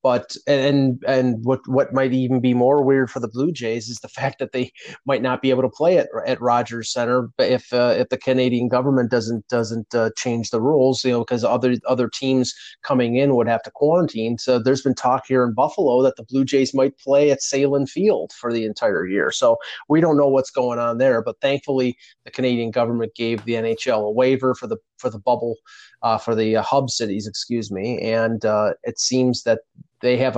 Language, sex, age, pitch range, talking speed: English, male, 30-49, 115-135 Hz, 220 wpm